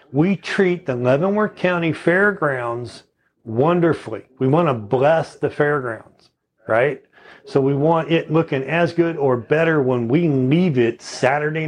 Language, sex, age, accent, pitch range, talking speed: English, male, 40-59, American, 130-165 Hz, 145 wpm